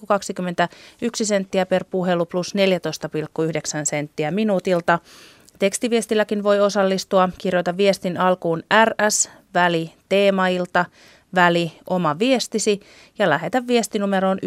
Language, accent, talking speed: Finnish, native, 95 wpm